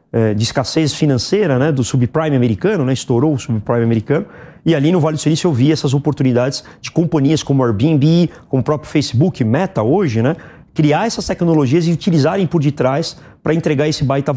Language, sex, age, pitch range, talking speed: Portuguese, male, 30-49, 130-165 Hz, 185 wpm